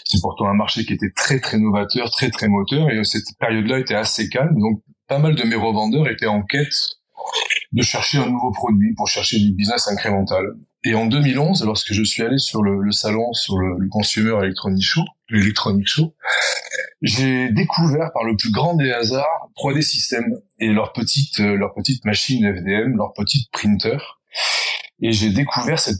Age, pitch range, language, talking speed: 30-49, 105-145 Hz, French, 185 wpm